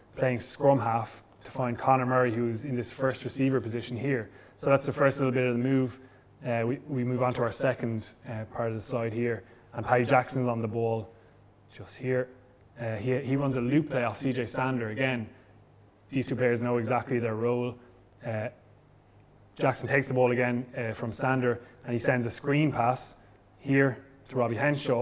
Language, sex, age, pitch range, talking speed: English, male, 20-39, 115-130 Hz, 195 wpm